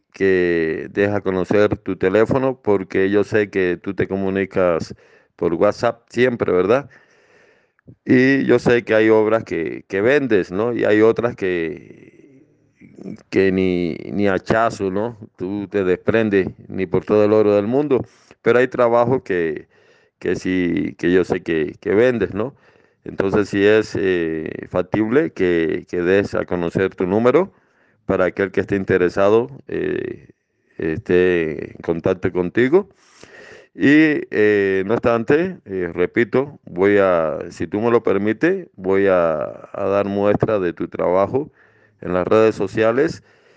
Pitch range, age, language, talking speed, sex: 95-120 Hz, 50-69, Spanish, 145 wpm, male